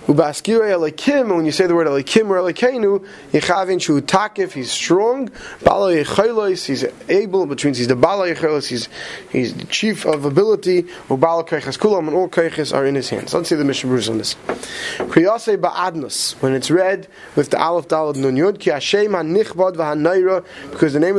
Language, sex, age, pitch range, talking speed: English, male, 20-39, 145-195 Hz, 165 wpm